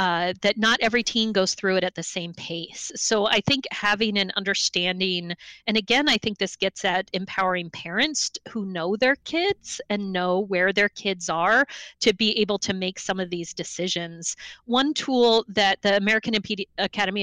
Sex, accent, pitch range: female, American, 180-220 Hz